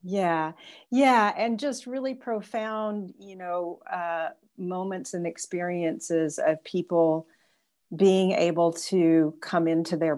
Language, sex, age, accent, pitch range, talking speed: English, female, 50-69, American, 160-175 Hz, 120 wpm